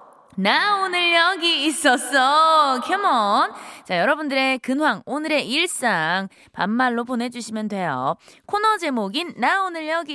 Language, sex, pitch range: Korean, female, 220-330 Hz